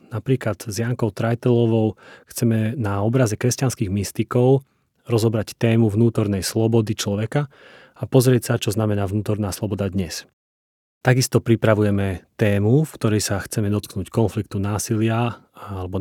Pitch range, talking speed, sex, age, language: 100-125 Hz, 125 wpm, male, 30-49, Slovak